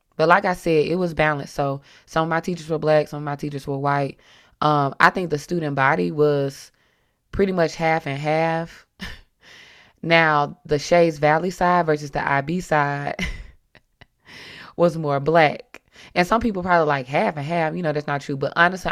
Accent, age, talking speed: American, 20-39, 185 wpm